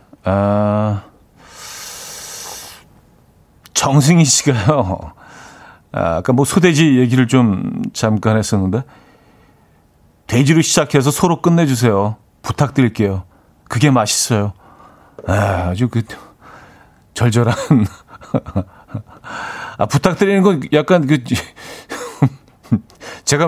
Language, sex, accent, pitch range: Korean, male, native, 100-135 Hz